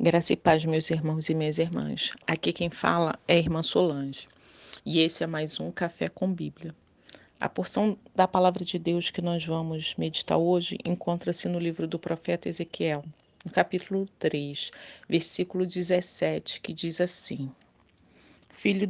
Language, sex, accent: Portuguese, female, Brazilian